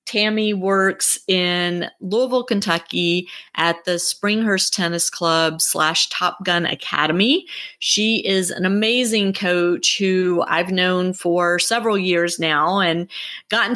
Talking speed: 120 wpm